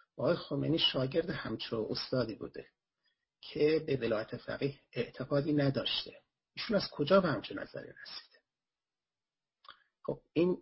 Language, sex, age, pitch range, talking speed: Persian, male, 40-59, 125-155 Hz, 120 wpm